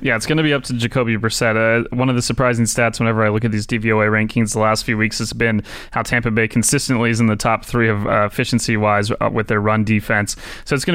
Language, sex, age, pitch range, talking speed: English, male, 20-39, 110-120 Hz, 260 wpm